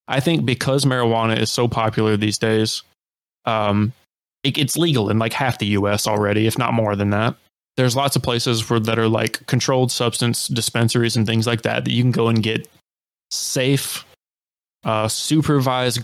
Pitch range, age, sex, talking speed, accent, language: 110-130 Hz, 20-39, male, 180 wpm, American, English